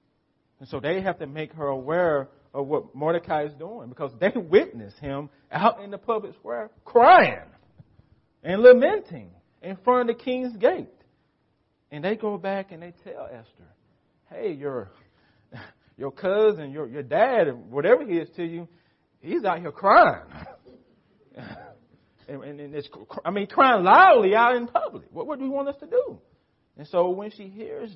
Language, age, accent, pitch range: English, 40-59, American, 125-185 Hz